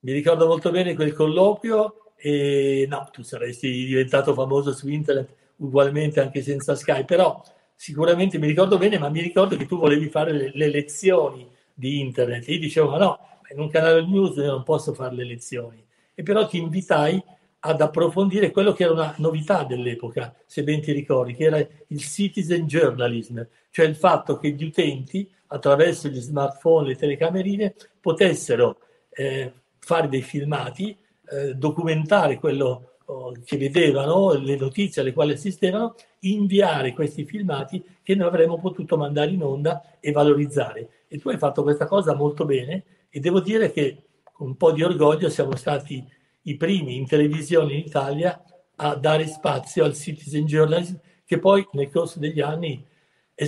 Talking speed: 165 wpm